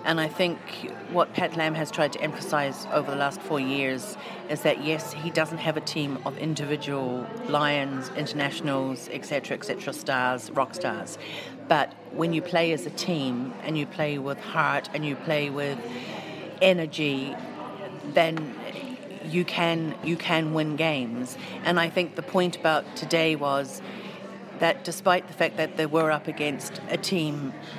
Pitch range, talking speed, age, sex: 145-175 Hz, 165 wpm, 40-59, female